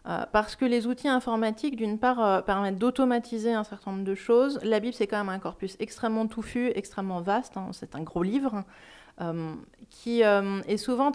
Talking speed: 195 wpm